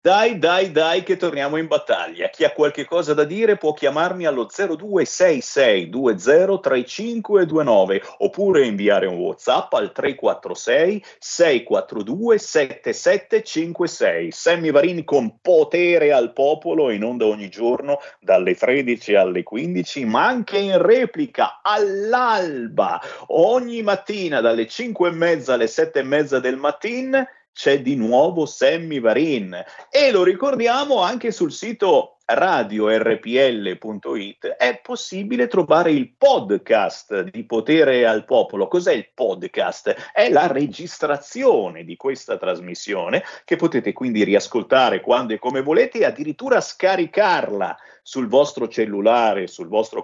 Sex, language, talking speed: male, Italian, 120 wpm